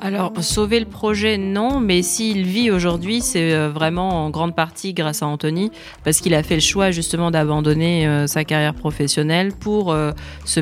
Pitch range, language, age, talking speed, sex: 160-205 Hz, French, 30-49, 180 wpm, female